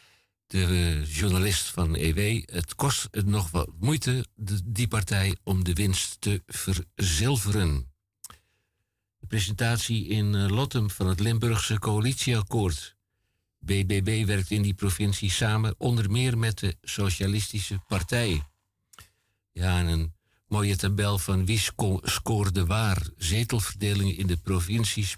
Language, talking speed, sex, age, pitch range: Dutch, 125 wpm, male, 60-79, 95-115 Hz